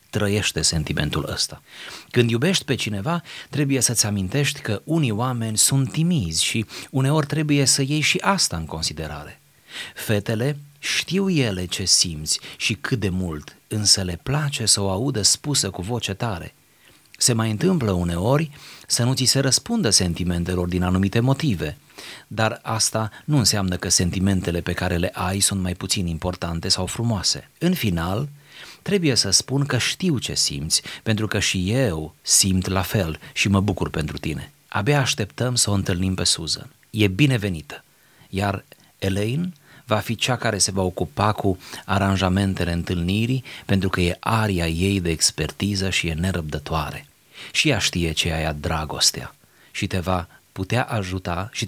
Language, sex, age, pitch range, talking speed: Romanian, male, 30-49, 90-130 Hz, 160 wpm